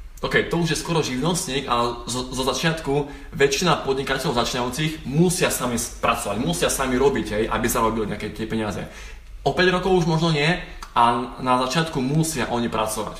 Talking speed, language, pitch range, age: 175 wpm, Slovak, 115-150 Hz, 20-39